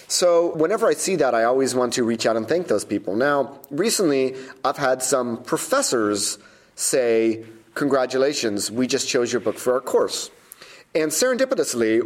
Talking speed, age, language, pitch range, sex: 165 wpm, 30-49, English, 110-130 Hz, male